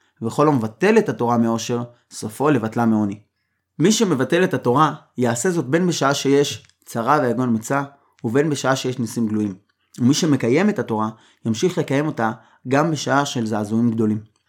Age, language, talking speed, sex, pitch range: 20-39, Hebrew, 155 wpm, male, 115-155 Hz